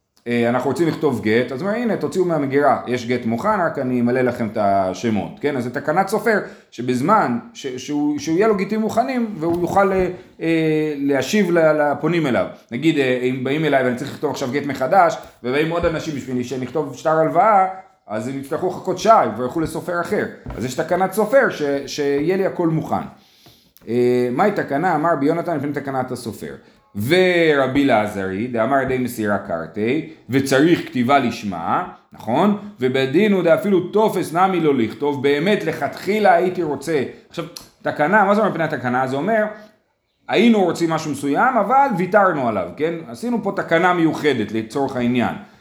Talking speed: 160 wpm